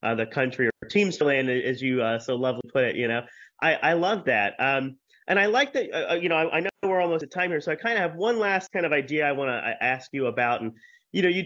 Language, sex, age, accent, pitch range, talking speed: English, male, 30-49, American, 130-185 Hz, 290 wpm